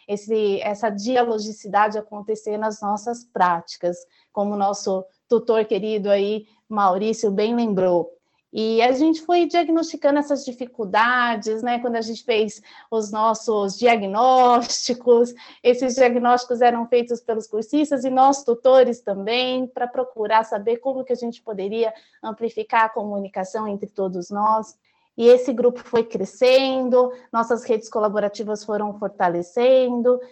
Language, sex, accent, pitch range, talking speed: Portuguese, female, Brazilian, 210-250 Hz, 125 wpm